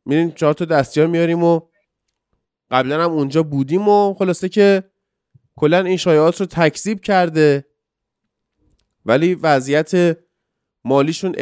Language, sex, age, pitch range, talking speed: Persian, male, 20-39, 140-190 Hz, 120 wpm